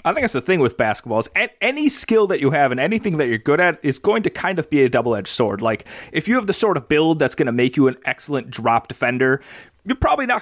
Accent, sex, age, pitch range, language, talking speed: American, male, 30-49, 120-160 Hz, English, 275 wpm